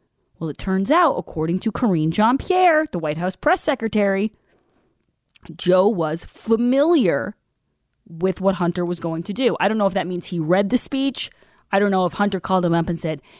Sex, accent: female, American